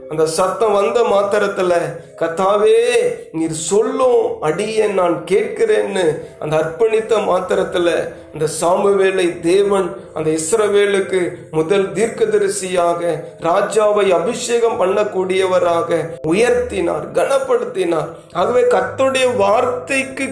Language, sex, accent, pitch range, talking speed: Tamil, male, native, 185-260 Hz, 85 wpm